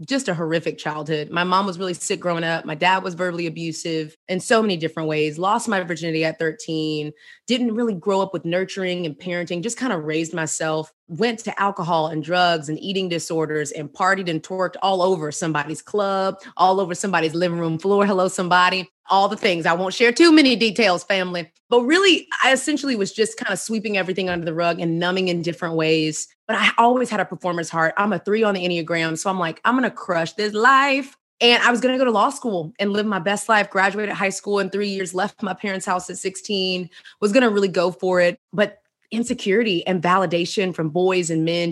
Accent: American